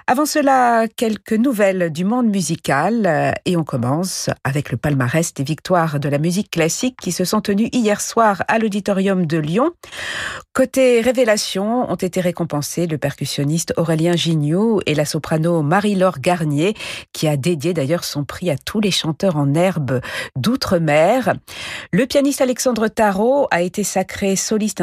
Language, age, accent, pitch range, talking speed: French, 50-69, French, 155-215 Hz, 155 wpm